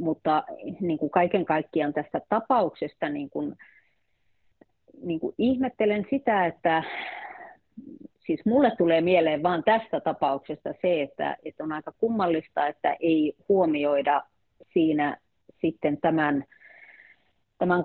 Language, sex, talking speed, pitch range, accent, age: Finnish, female, 115 wpm, 150-210 Hz, native, 30-49